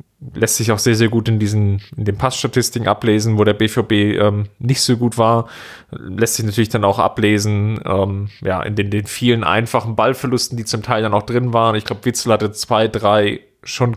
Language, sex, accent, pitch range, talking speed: German, male, German, 105-120 Hz, 205 wpm